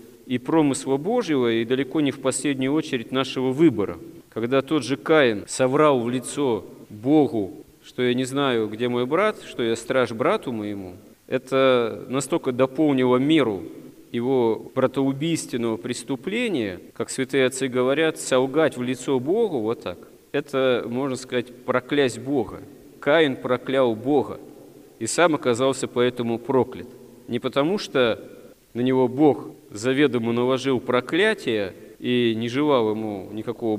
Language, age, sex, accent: Russian, 40-59, male, native